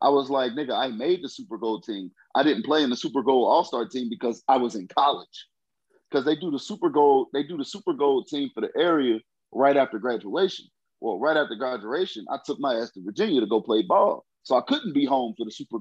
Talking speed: 245 wpm